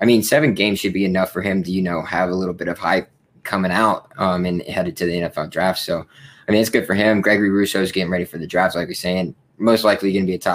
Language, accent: English, American